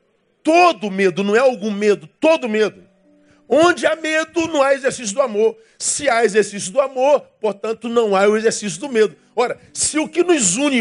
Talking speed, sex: 190 wpm, male